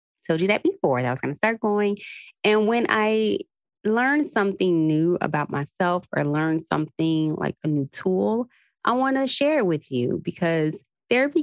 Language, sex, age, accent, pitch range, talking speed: English, female, 20-39, American, 145-195 Hz, 185 wpm